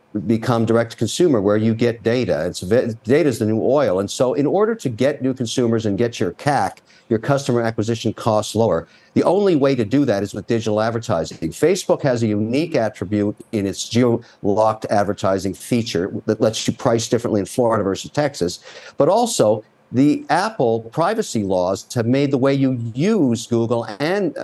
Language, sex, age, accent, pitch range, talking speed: English, male, 50-69, American, 110-145 Hz, 175 wpm